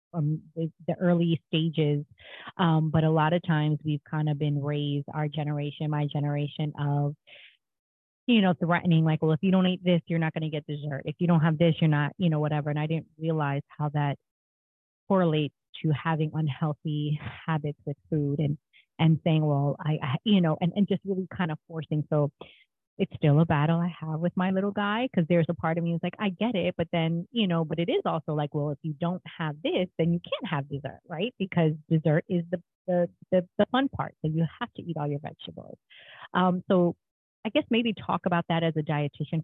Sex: female